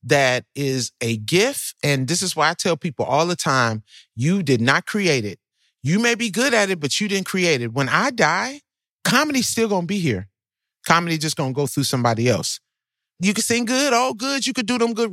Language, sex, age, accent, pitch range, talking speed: English, male, 40-59, American, 140-200 Hz, 230 wpm